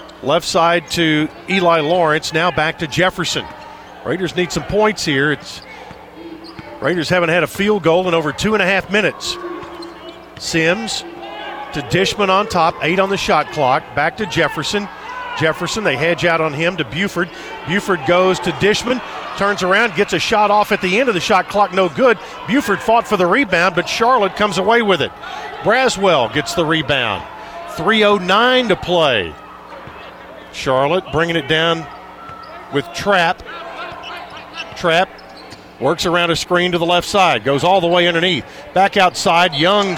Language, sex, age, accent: English, male, 50-69, American